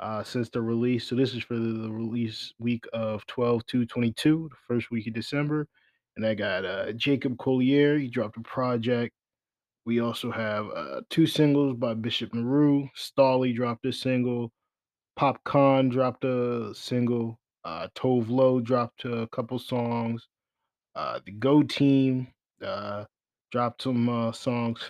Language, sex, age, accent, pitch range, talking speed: English, male, 20-39, American, 115-130 Hz, 150 wpm